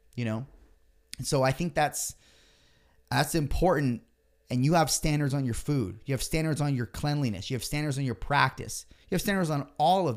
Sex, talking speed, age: male, 195 wpm, 30-49